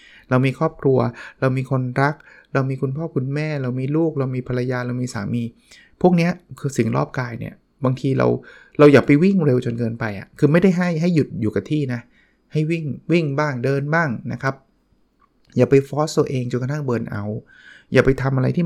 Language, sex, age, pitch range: Thai, male, 20-39, 120-155 Hz